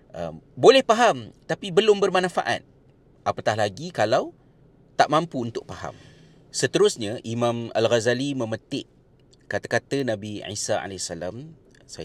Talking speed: 110 wpm